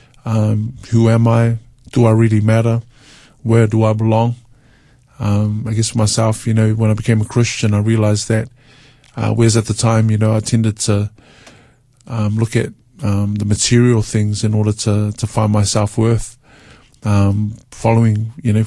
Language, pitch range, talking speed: English, 110-120 Hz, 180 wpm